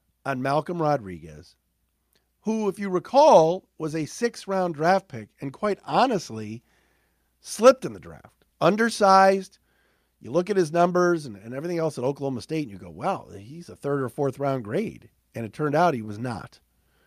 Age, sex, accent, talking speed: 50-69, male, American, 170 wpm